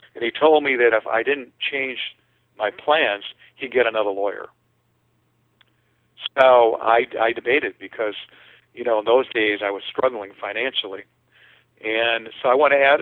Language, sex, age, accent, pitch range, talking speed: English, male, 50-69, American, 110-130 Hz, 155 wpm